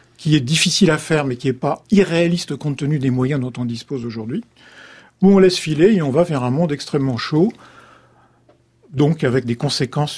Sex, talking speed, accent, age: male, 200 wpm, French, 50-69